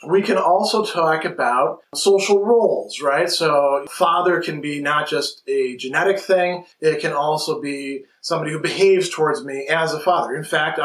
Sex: male